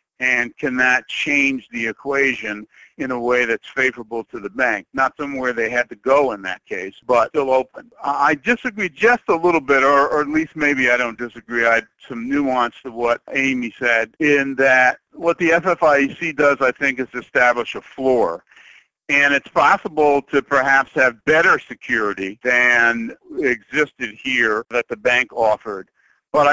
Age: 60-79